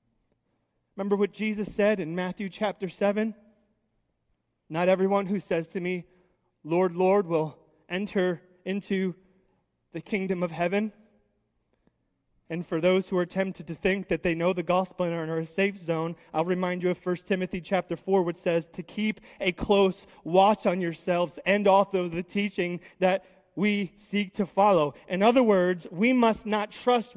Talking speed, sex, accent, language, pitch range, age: 165 wpm, male, American, English, 180-215 Hz, 30-49